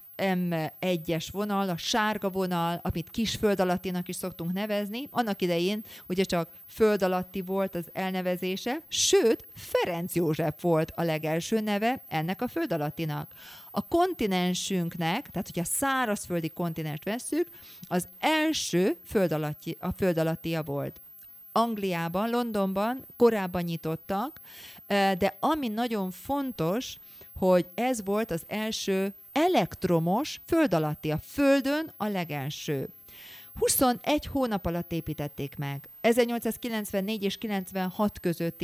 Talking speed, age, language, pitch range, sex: 110 wpm, 30-49, Hungarian, 170-230 Hz, female